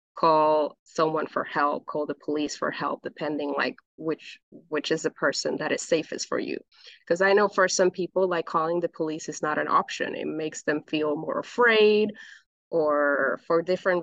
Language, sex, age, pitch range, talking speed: English, female, 20-39, 155-185 Hz, 190 wpm